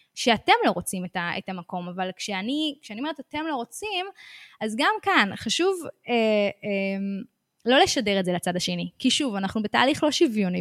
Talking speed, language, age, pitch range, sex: 185 wpm, Hebrew, 20-39, 190-260 Hz, female